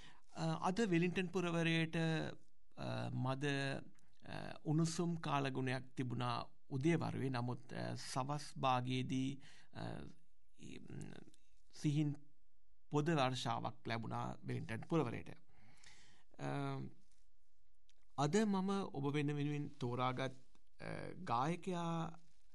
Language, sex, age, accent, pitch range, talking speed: English, male, 60-79, Indian, 125-165 Hz, 60 wpm